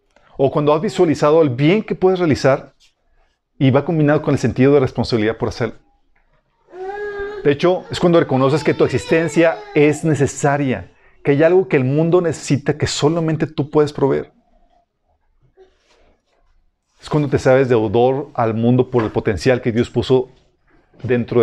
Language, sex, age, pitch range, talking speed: Spanish, male, 40-59, 120-160 Hz, 155 wpm